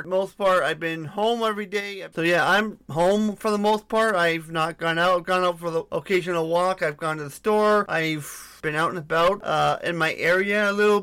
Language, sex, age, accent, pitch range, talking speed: English, male, 30-49, American, 155-185 Hz, 225 wpm